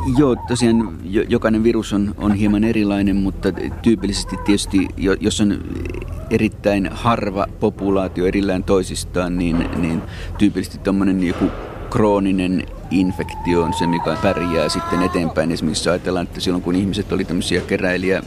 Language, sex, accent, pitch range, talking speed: Finnish, male, native, 90-100 Hz, 130 wpm